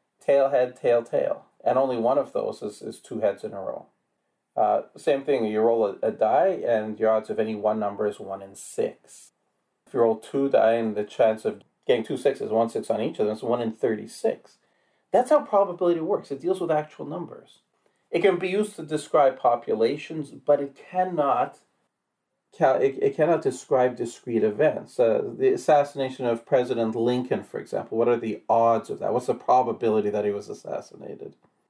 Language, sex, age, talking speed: English, male, 40-59, 195 wpm